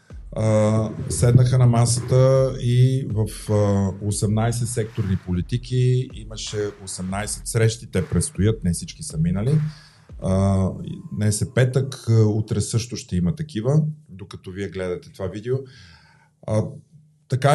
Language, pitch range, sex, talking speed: Bulgarian, 100-130 Hz, male, 105 wpm